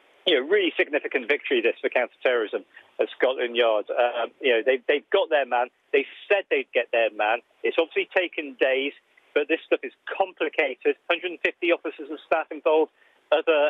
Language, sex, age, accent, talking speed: English, male, 40-59, British, 175 wpm